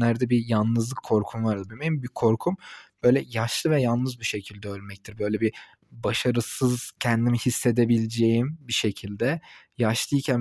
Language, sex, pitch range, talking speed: Turkish, male, 115-145 Hz, 140 wpm